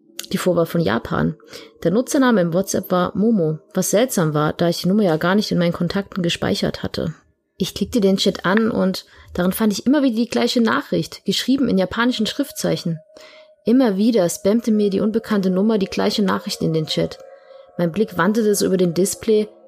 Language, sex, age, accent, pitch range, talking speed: German, female, 30-49, German, 175-220 Hz, 195 wpm